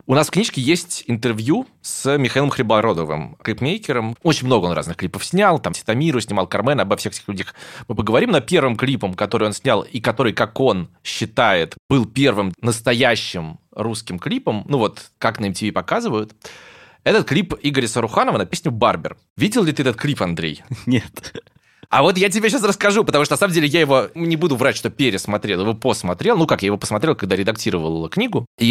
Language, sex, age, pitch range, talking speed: Russian, male, 20-39, 100-150 Hz, 190 wpm